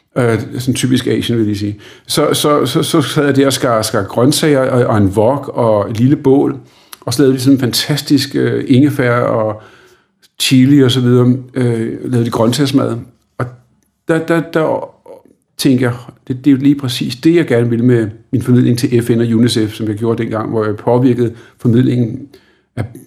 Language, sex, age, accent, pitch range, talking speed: Danish, male, 50-69, native, 115-140 Hz, 180 wpm